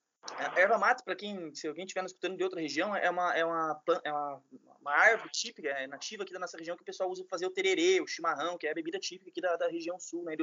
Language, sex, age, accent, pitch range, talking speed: Portuguese, male, 20-39, Brazilian, 175-235 Hz, 275 wpm